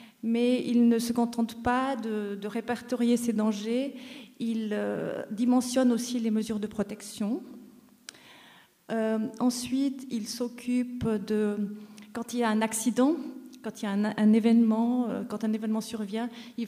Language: French